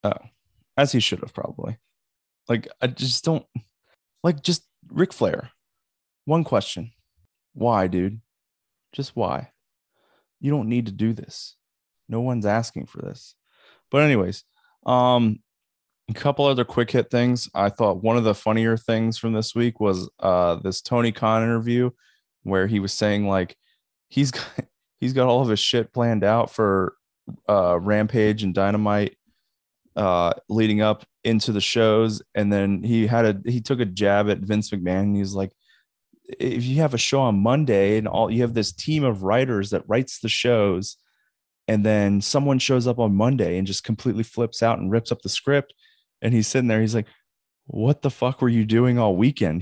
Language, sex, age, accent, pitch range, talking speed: English, male, 20-39, American, 100-120 Hz, 175 wpm